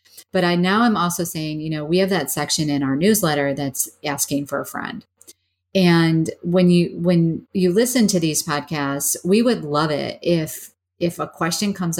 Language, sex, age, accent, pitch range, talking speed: English, female, 40-59, American, 145-180 Hz, 190 wpm